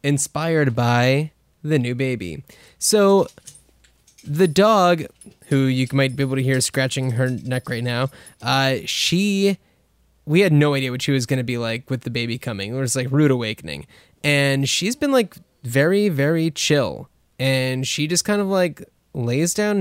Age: 20-39